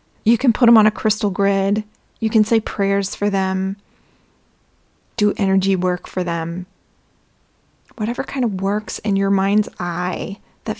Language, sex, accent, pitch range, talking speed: English, female, American, 195-225 Hz, 155 wpm